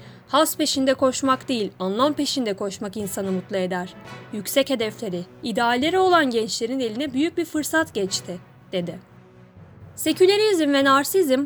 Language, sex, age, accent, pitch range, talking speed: Turkish, female, 30-49, native, 205-315 Hz, 125 wpm